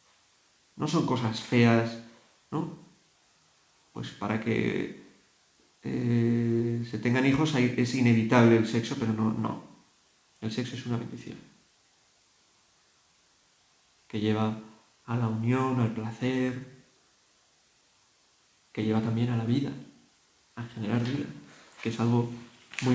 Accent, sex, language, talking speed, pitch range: Spanish, male, Spanish, 115 wpm, 115-130 Hz